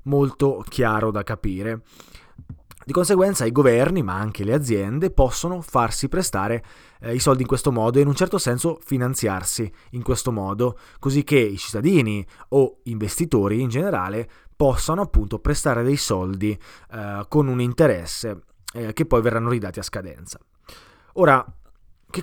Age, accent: 20-39, native